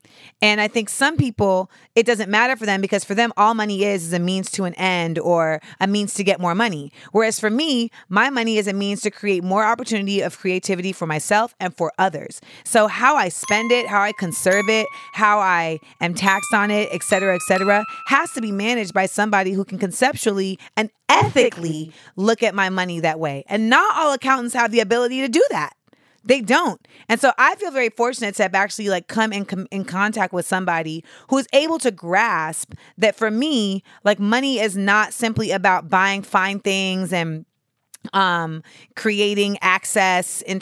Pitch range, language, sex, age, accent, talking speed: 180-220 Hz, English, female, 30-49, American, 200 wpm